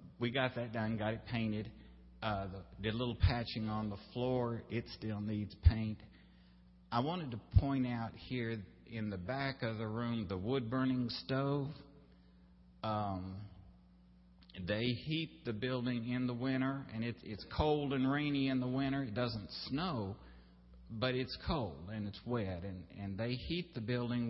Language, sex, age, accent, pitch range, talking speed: English, male, 50-69, American, 95-120 Hz, 160 wpm